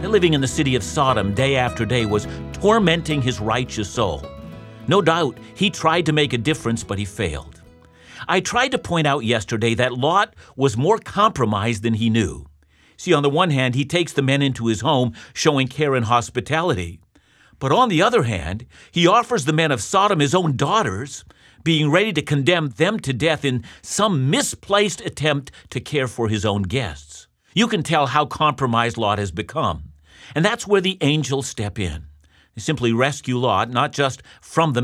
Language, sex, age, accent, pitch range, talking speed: English, male, 50-69, American, 115-160 Hz, 190 wpm